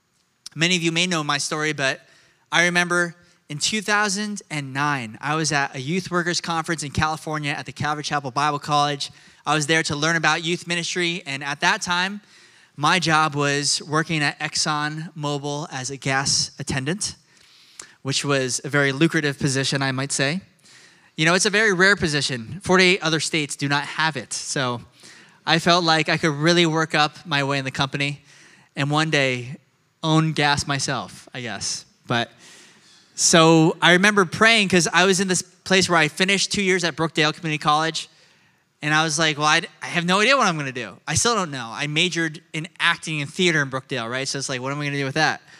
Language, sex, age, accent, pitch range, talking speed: English, male, 20-39, American, 145-175 Hz, 200 wpm